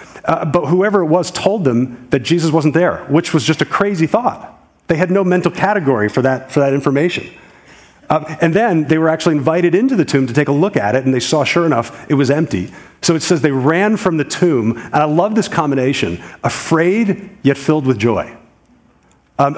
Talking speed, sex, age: 210 wpm, male, 40-59